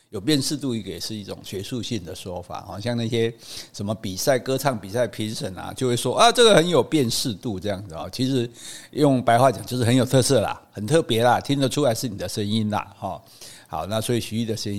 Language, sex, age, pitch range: Chinese, male, 50-69, 100-135 Hz